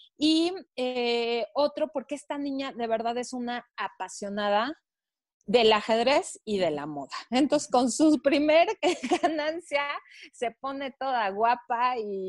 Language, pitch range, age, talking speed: Spanish, 215-270 Hz, 30-49, 130 wpm